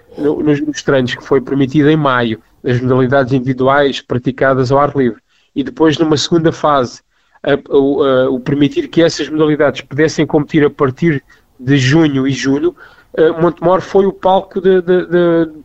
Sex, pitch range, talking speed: male, 135-160 Hz, 155 wpm